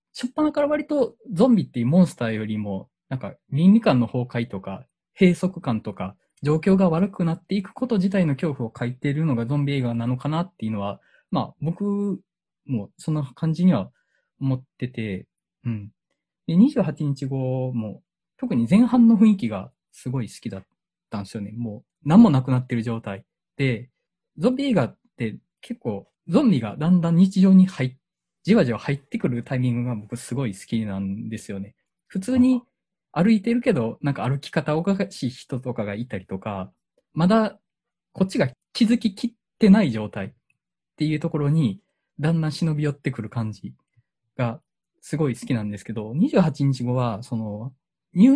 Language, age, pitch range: Japanese, 20-39, 115-195 Hz